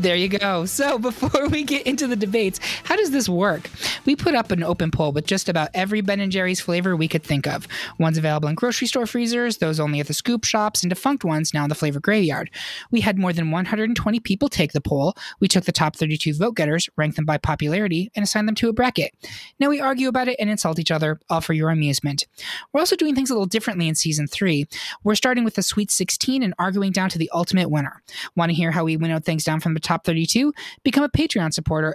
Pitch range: 160-225 Hz